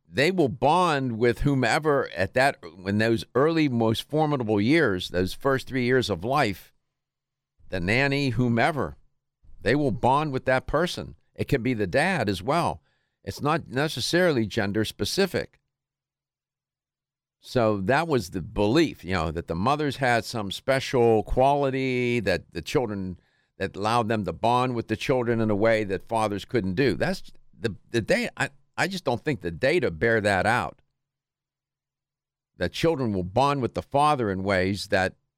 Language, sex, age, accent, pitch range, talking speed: English, male, 50-69, American, 110-140 Hz, 165 wpm